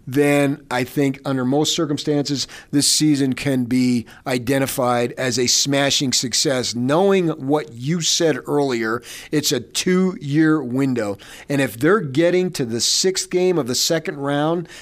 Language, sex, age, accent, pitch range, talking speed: English, male, 40-59, American, 125-155 Hz, 150 wpm